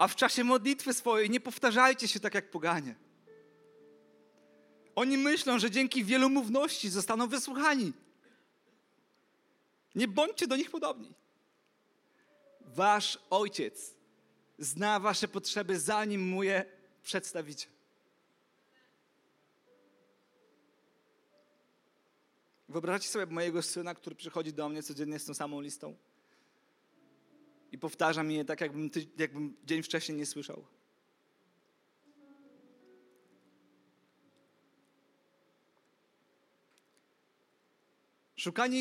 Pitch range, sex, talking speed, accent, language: 150-240 Hz, male, 90 wpm, native, Polish